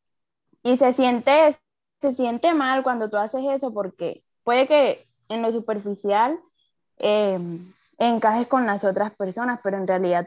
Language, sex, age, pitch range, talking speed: Spanish, female, 10-29, 205-260 Hz, 145 wpm